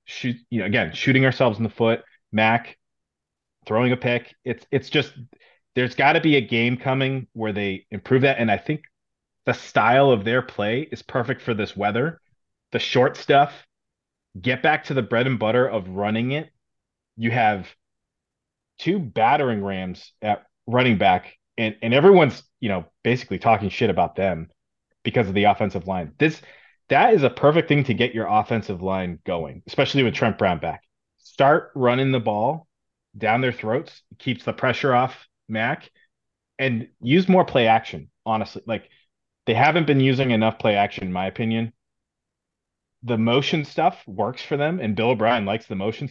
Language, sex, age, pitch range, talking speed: English, male, 30-49, 105-130 Hz, 175 wpm